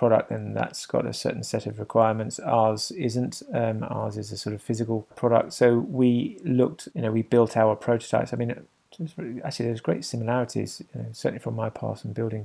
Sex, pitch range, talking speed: male, 110-125 Hz, 205 wpm